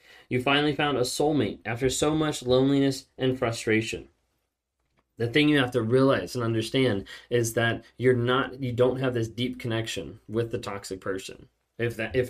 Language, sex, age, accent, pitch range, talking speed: English, male, 20-39, American, 105-125 Hz, 175 wpm